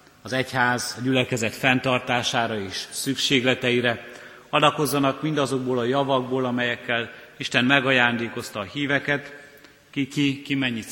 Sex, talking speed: male, 105 wpm